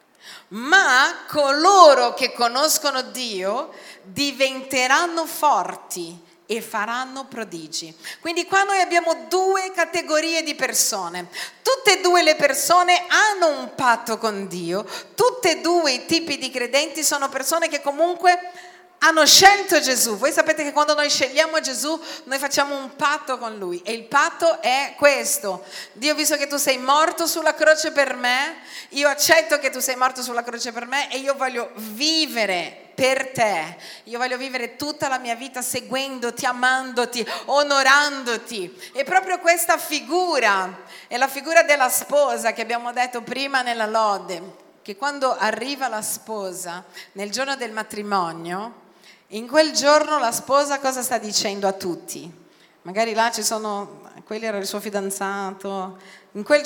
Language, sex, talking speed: Italian, female, 150 wpm